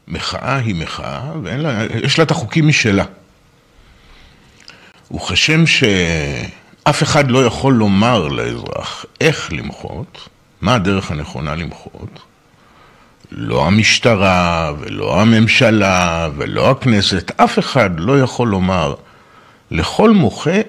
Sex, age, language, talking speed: male, 50-69, Hebrew, 100 wpm